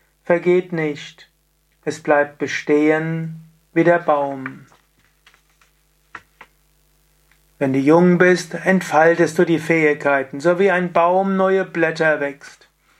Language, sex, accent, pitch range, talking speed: German, male, German, 150-175 Hz, 105 wpm